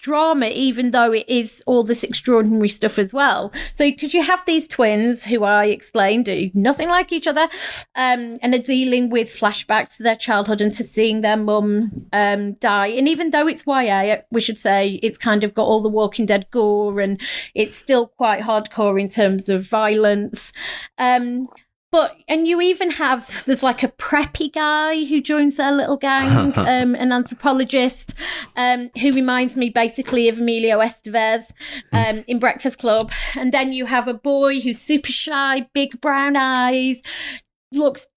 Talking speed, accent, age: 175 wpm, British, 30-49